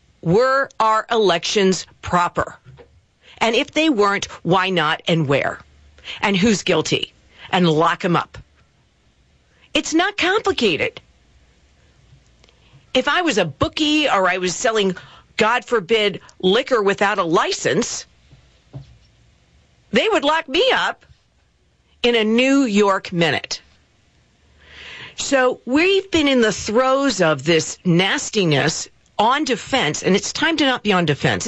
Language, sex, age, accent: English, female, 50-69, American